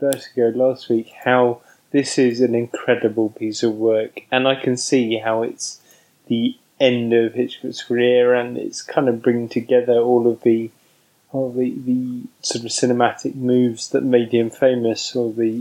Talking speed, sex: 170 wpm, male